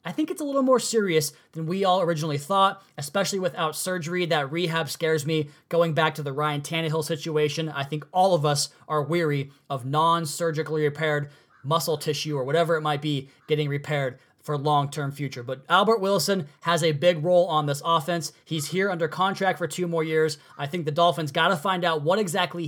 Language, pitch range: English, 160-215 Hz